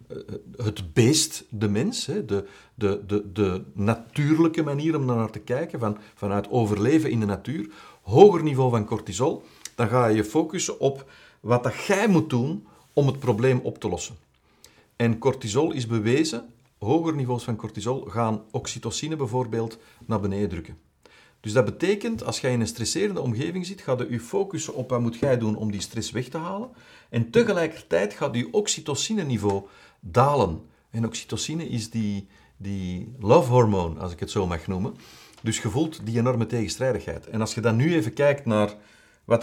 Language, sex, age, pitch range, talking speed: Dutch, male, 50-69, 105-135 Hz, 170 wpm